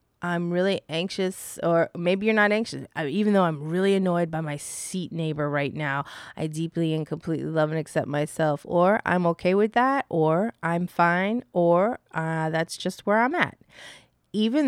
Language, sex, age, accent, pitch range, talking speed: English, female, 20-39, American, 160-195 Hz, 175 wpm